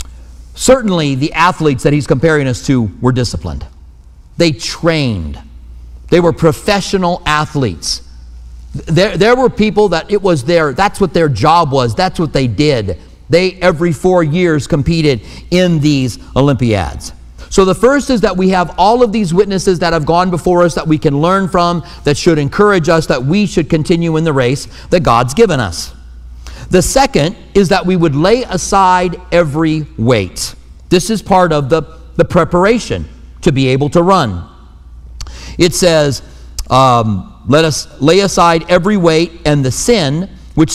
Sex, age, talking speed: male, 50-69, 165 wpm